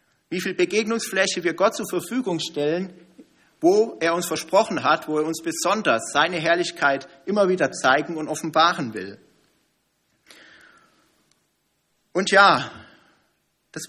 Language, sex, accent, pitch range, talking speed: German, male, German, 140-195 Hz, 120 wpm